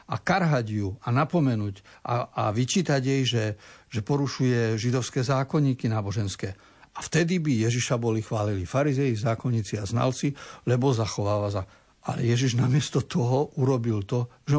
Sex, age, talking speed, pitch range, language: male, 60-79, 145 wpm, 110-140 Hz, Slovak